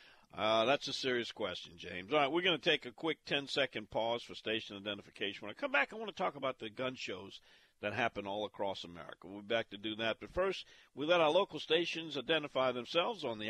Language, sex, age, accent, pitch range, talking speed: English, male, 50-69, American, 105-155 Hz, 235 wpm